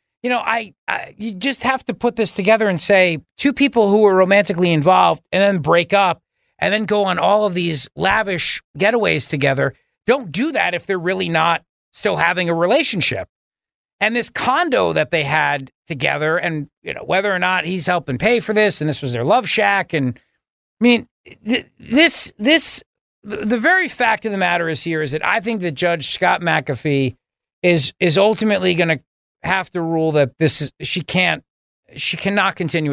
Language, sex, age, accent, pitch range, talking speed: English, male, 40-59, American, 155-205 Hz, 195 wpm